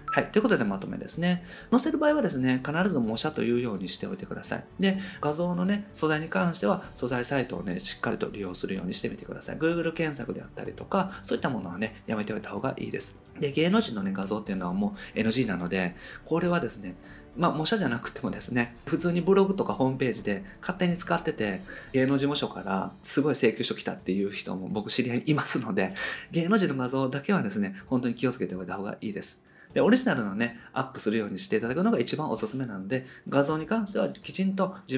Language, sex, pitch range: Japanese, male, 130-205 Hz